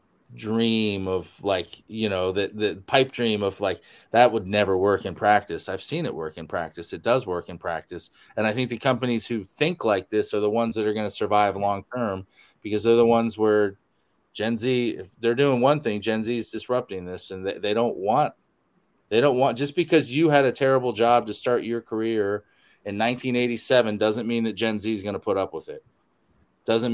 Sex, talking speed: male, 215 wpm